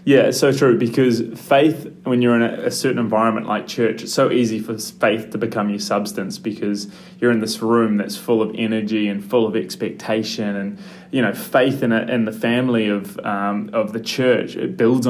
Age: 20-39